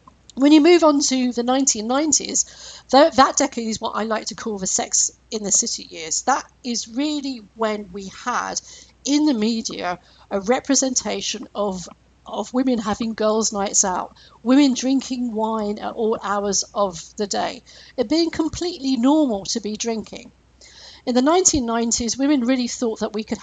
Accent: British